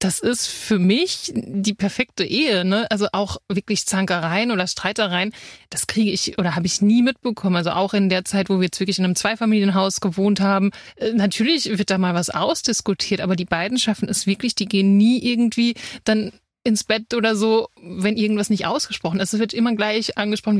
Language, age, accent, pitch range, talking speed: German, 30-49, German, 185-215 Hz, 195 wpm